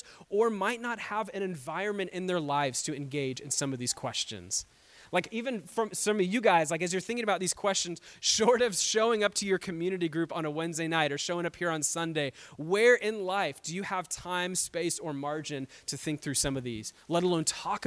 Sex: male